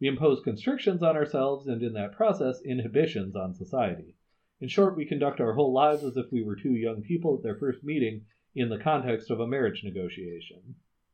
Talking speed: 200 wpm